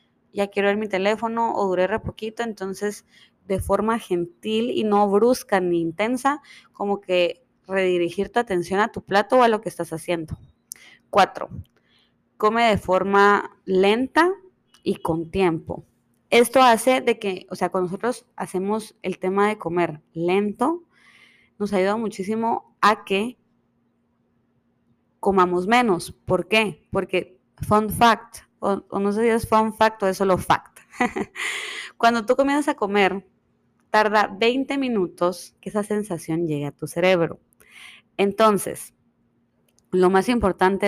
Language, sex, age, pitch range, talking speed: Spanish, female, 20-39, 185-220 Hz, 140 wpm